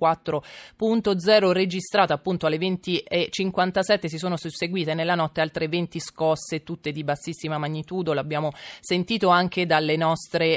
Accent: native